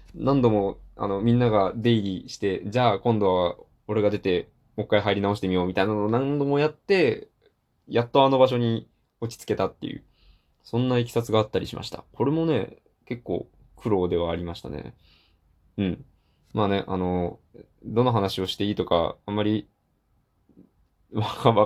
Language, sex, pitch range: Japanese, male, 95-130 Hz